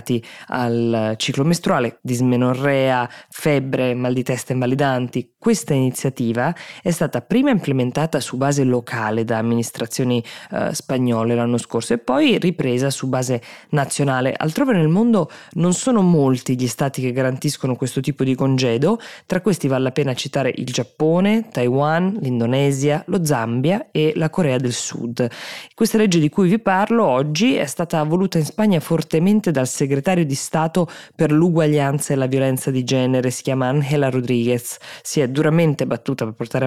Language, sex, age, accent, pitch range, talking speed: Italian, female, 20-39, native, 125-155 Hz, 155 wpm